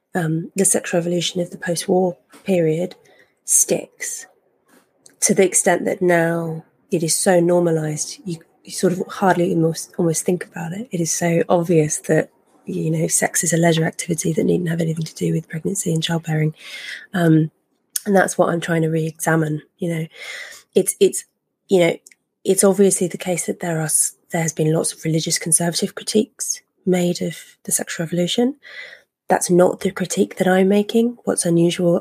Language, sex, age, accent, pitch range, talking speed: English, female, 20-39, British, 160-185 Hz, 170 wpm